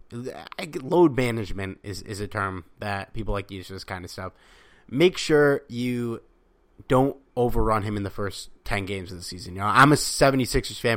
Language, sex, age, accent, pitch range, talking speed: English, male, 30-49, American, 105-145 Hz, 195 wpm